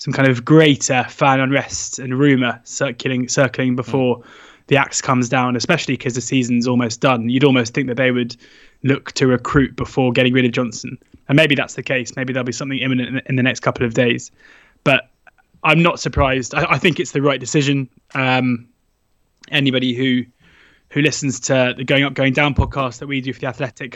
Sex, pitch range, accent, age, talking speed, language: male, 125-135 Hz, British, 20-39, 200 wpm, English